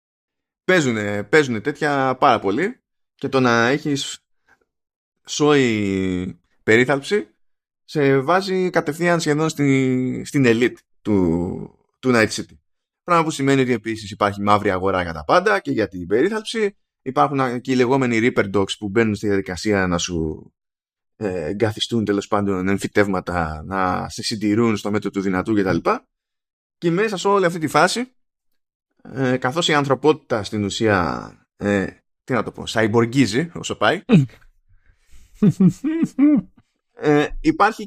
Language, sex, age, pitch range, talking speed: Greek, male, 20-39, 105-150 Hz, 130 wpm